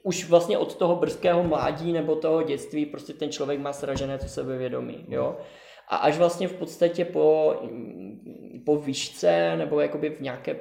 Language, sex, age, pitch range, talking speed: Czech, male, 20-39, 140-170 Hz, 165 wpm